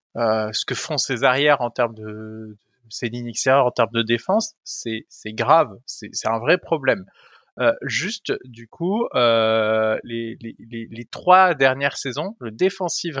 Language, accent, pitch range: French, French, 125-190 Hz